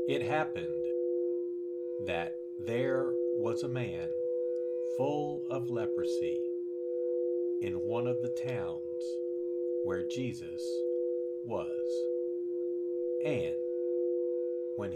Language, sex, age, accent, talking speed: English, male, 50-69, American, 80 wpm